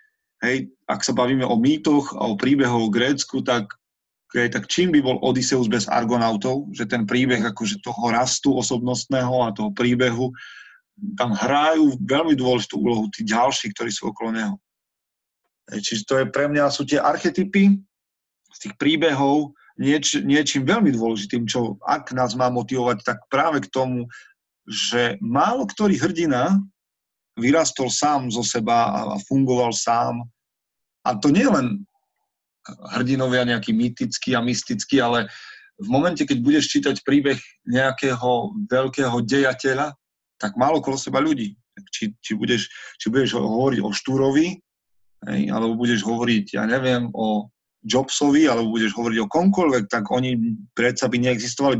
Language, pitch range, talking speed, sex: Slovak, 120-155 Hz, 145 wpm, male